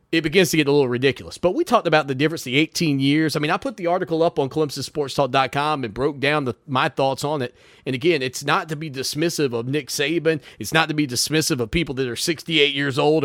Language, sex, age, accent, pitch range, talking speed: English, male, 30-49, American, 135-180 Hz, 245 wpm